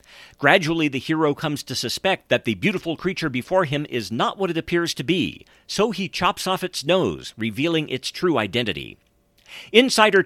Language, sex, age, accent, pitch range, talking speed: English, male, 50-69, American, 140-190 Hz, 175 wpm